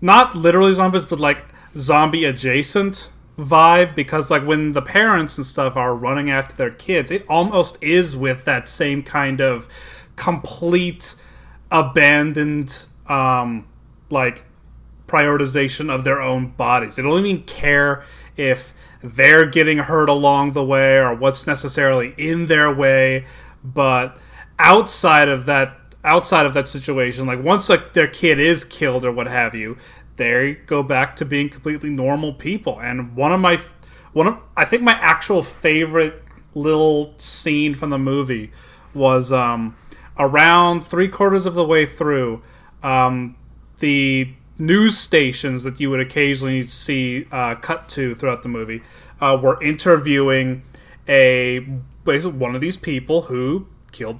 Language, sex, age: English, male, 30-49